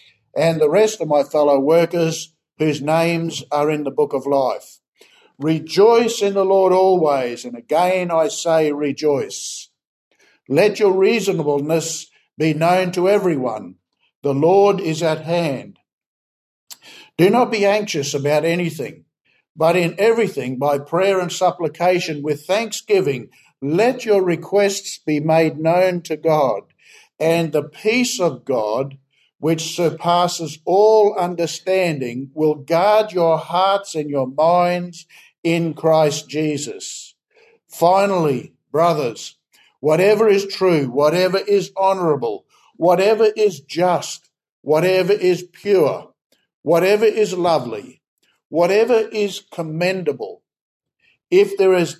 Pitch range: 155-195 Hz